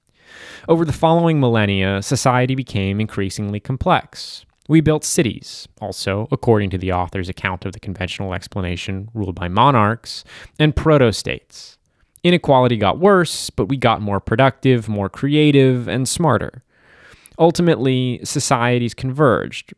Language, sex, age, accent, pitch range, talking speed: English, male, 20-39, American, 100-135 Hz, 125 wpm